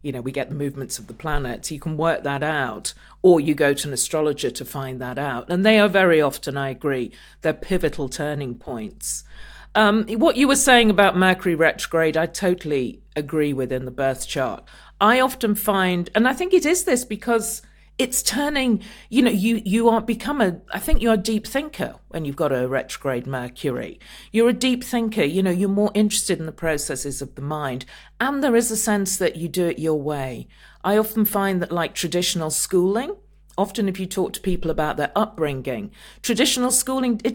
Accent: British